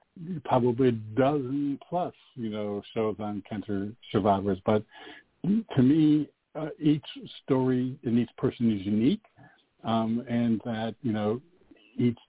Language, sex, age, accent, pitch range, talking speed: English, male, 50-69, American, 110-135 Hz, 130 wpm